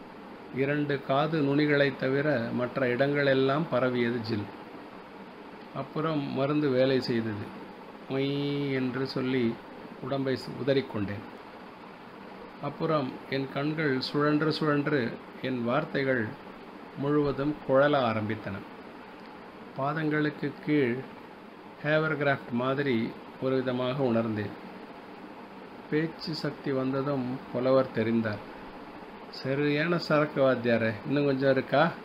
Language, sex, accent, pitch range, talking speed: Tamil, male, native, 125-145 Hz, 90 wpm